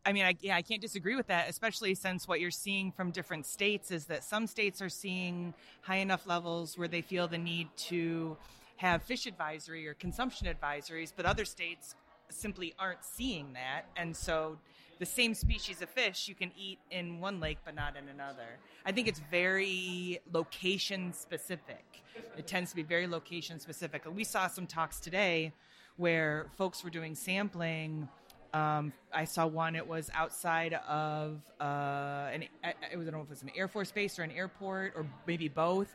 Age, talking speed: 30-49, 180 wpm